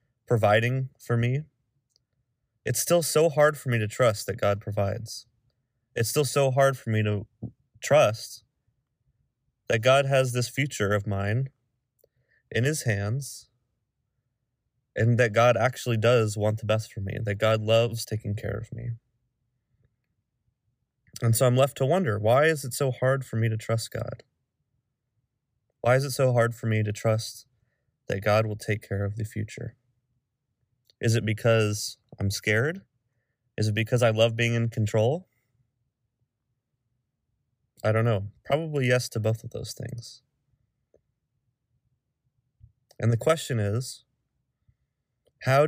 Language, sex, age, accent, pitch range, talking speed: English, male, 20-39, American, 115-130 Hz, 145 wpm